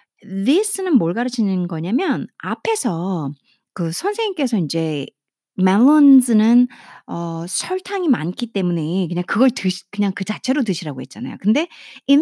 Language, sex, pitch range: Korean, female, 180-260 Hz